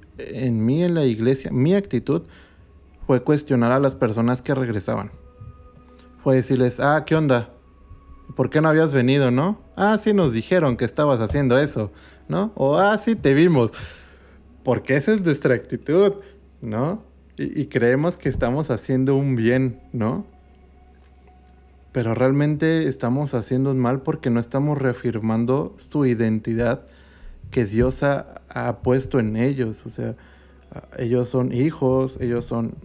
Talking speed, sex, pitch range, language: 150 wpm, male, 80-140 Hz, Spanish